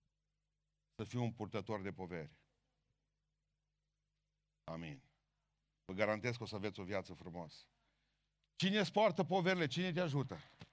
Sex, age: male, 50-69